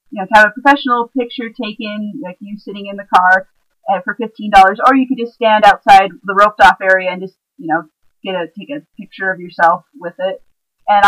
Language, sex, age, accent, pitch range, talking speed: English, female, 30-49, American, 190-225 Hz, 215 wpm